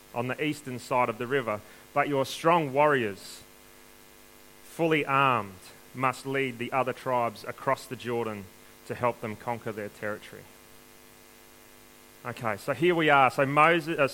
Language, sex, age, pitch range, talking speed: English, male, 30-49, 105-130 Hz, 150 wpm